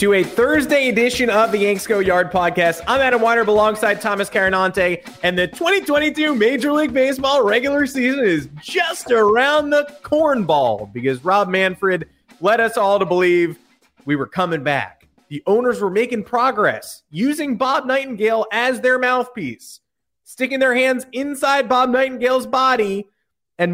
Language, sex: English, male